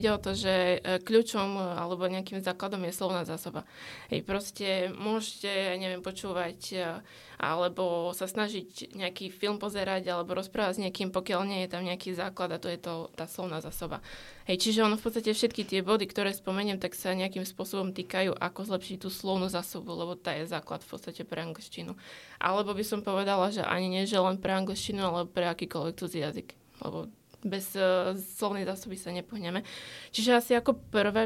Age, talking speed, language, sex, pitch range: 20-39, 170 wpm, Slovak, female, 180-210 Hz